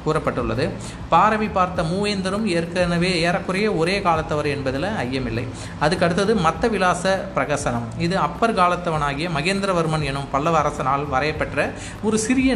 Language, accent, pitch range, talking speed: Tamil, native, 145-190 Hz, 115 wpm